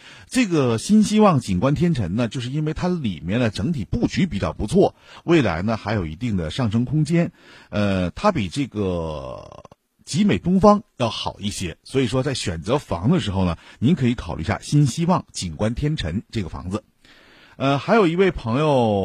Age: 50-69